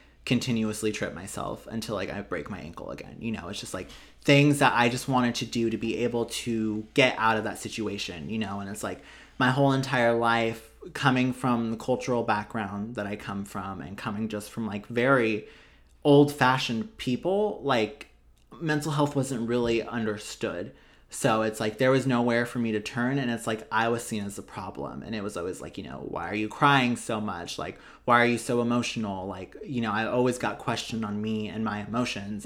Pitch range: 105-125 Hz